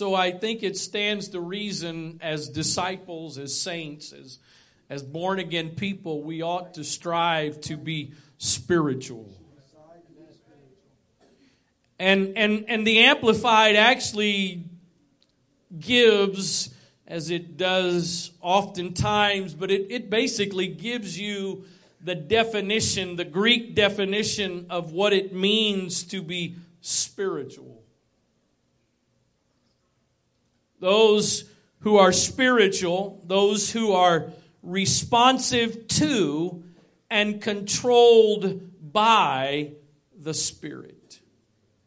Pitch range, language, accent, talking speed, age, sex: 170-210 Hz, English, American, 95 wpm, 40-59, male